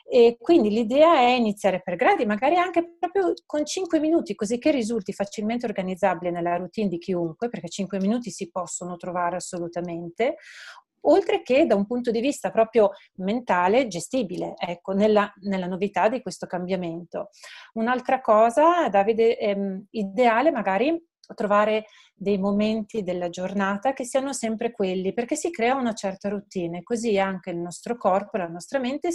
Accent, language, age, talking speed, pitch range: native, Italian, 40-59, 155 wpm, 190-235 Hz